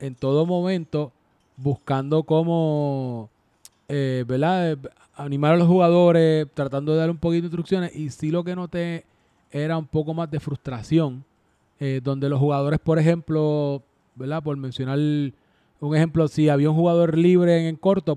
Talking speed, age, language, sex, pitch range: 160 wpm, 20-39, Spanish, male, 135-160 Hz